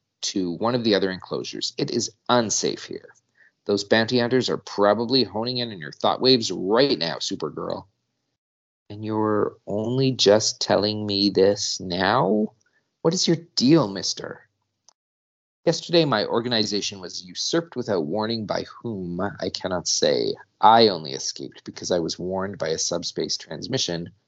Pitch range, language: 95-130 Hz, English